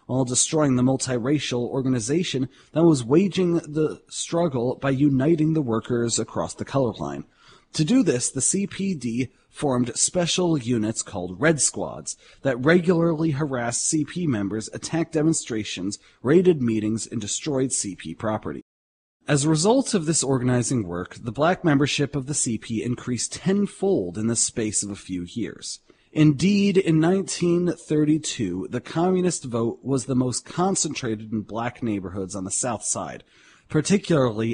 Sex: male